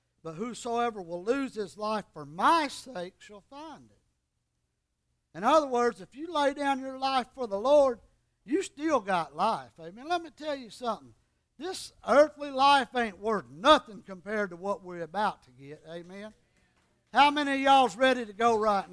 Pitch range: 210-320 Hz